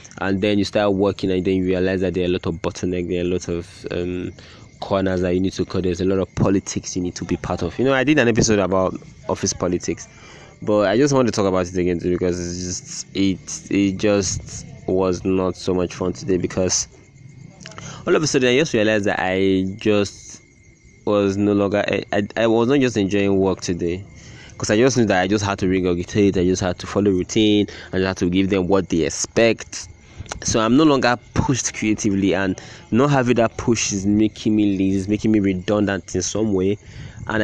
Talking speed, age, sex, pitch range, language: 225 wpm, 20-39, male, 90-110 Hz, English